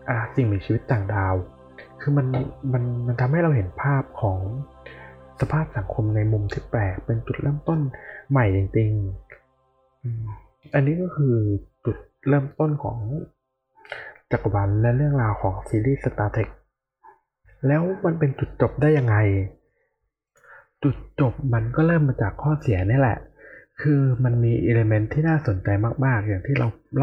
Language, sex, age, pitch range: Thai, male, 20-39, 105-140 Hz